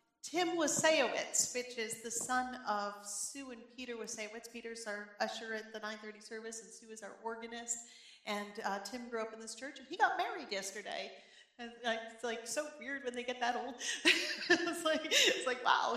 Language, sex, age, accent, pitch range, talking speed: English, female, 40-59, American, 205-245 Hz, 190 wpm